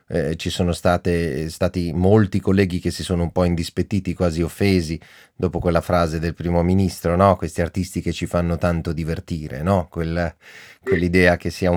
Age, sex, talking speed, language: 30-49, male, 175 wpm, Italian